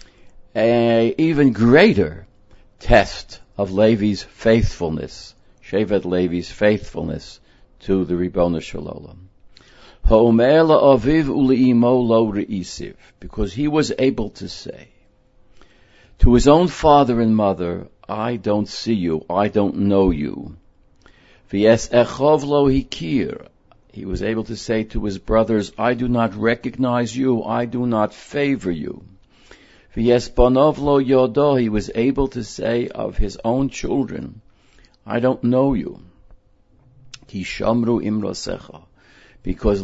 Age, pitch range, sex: 60-79, 100-125 Hz, male